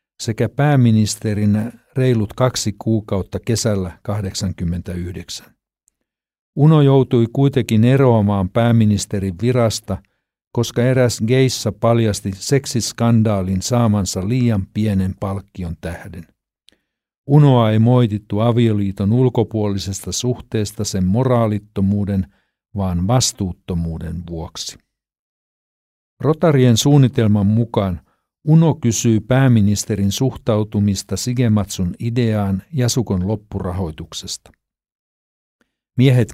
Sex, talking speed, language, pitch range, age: male, 75 wpm, Finnish, 100-120 Hz, 60-79